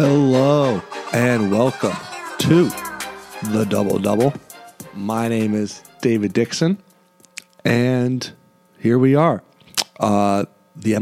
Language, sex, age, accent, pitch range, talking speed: English, male, 40-59, American, 100-120 Hz, 100 wpm